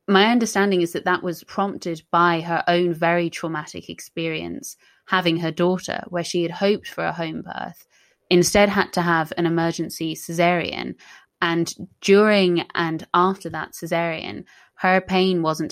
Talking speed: 155 wpm